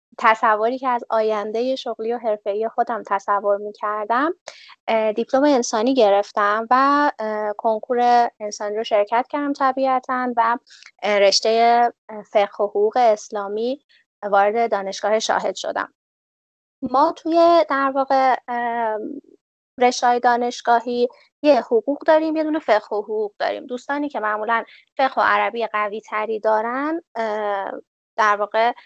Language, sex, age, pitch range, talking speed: Persian, female, 20-39, 215-265 Hz, 115 wpm